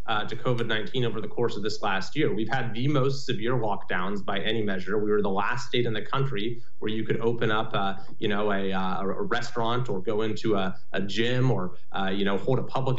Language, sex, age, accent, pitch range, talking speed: English, male, 30-49, American, 115-145 Hz, 240 wpm